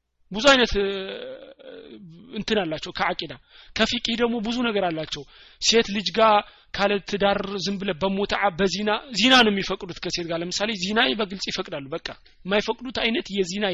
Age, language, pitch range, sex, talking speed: 30-49, Amharic, 165-220 Hz, male, 120 wpm